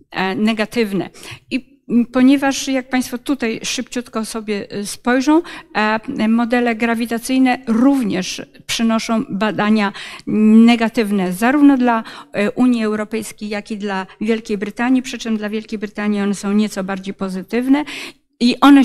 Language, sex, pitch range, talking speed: Polish, female, 210-245 Hz, 115 wpm